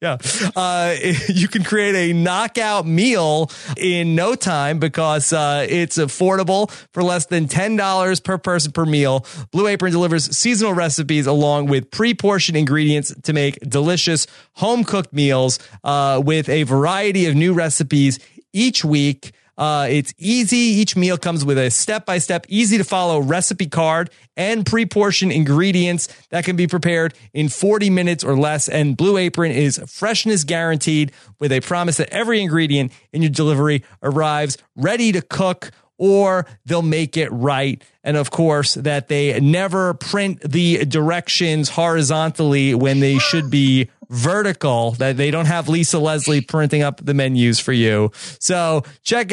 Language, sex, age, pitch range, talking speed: English, male, 30-49, 145-190 Hz, 155 wpm